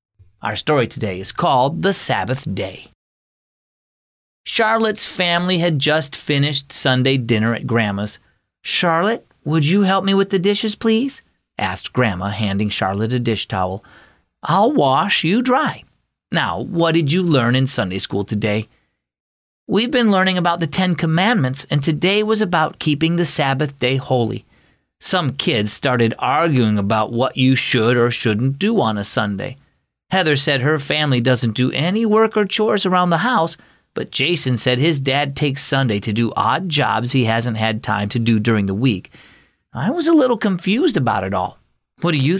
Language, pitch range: English, 115-165 Hz